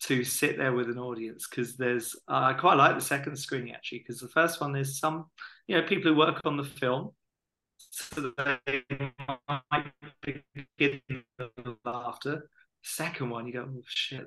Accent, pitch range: British, 125-145 Hz